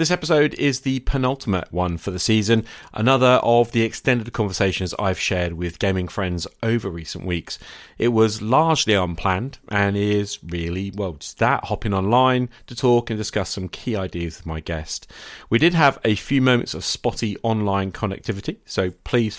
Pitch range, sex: 95-120 Hz, male